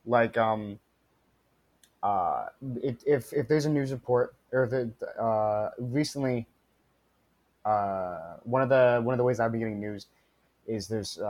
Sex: male